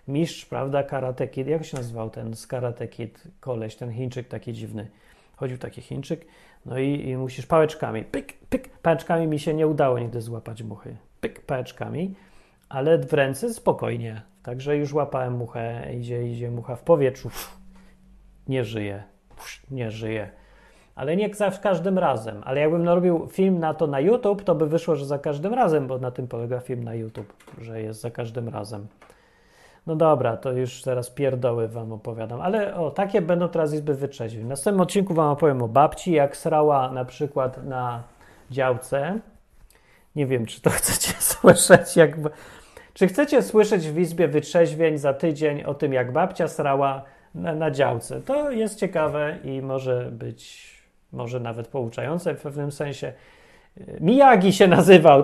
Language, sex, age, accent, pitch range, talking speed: Polish, male, 40-59, native, 120-170 Hz, 165 wpm